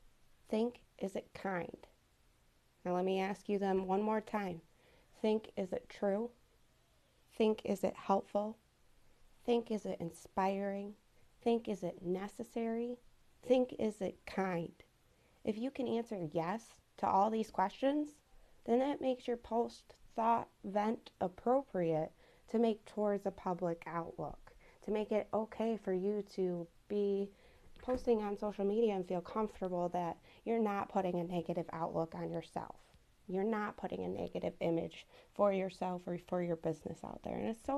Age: 30-49